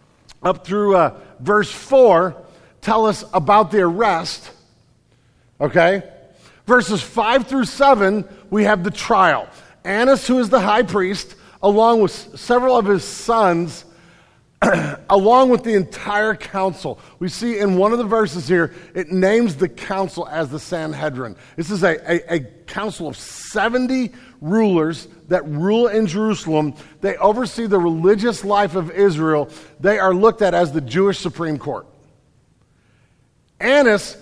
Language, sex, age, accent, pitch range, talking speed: English, male, 50-69, American, 170-215 Hz, 140 wpm